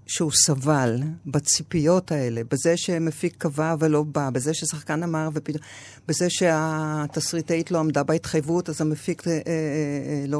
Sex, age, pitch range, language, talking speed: female, 50-69, 140-170 Hz, Hebrew, 120 wpm